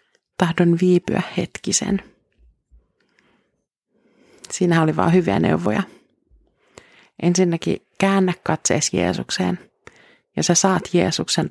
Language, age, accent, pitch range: Finnish, 30-49, native, 165-195 Hz